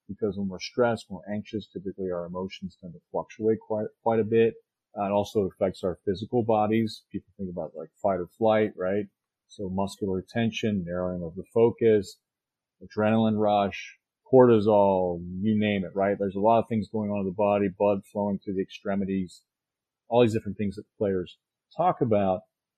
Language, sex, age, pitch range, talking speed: English, male, 40-59, 100-115 Hz, 185 wpm